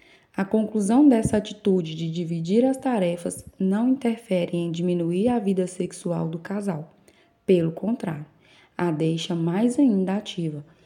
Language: Portuguese